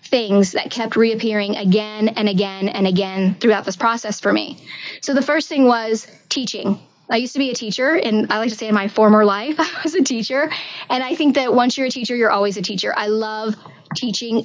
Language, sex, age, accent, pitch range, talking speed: English, female, 20-39, American, 210-255 Hz, 225 wpm